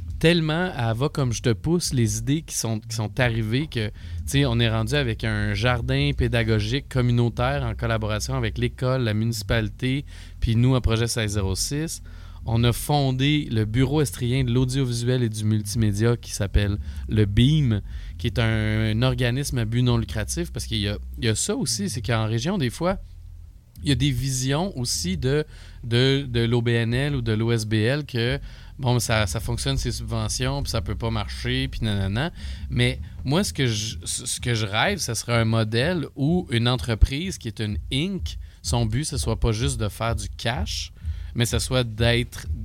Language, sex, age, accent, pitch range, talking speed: French, male, 30-49, Canadian, 105-130 Hz, 185 wpm